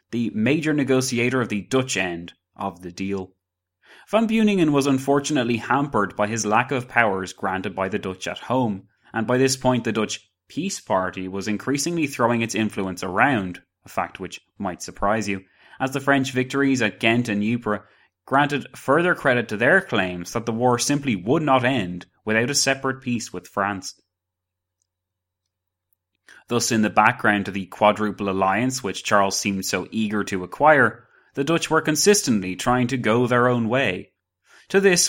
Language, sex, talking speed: English, male, 170 wpm